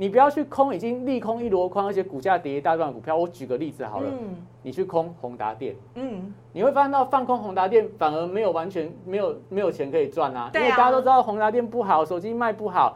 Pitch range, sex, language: 155-225 Hz, male, Chinese